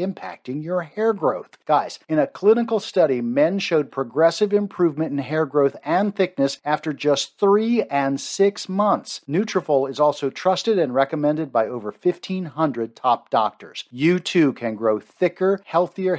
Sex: male